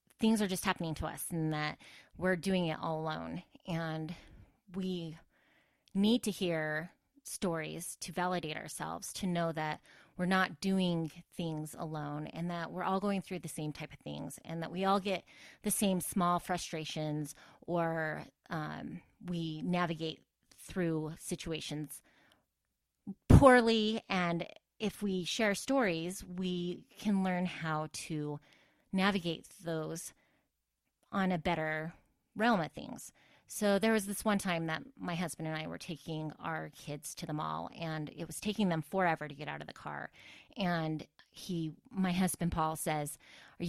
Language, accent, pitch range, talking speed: English, American, 155-190 Hz, 155 wpm